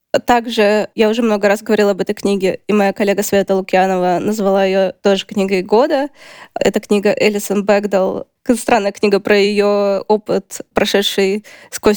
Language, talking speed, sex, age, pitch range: Russian, 150 wpm, female, 20-39, 200-230 Hz